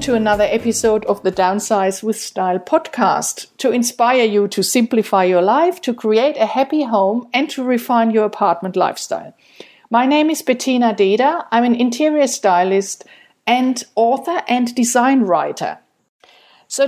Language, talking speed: English, 150 wpm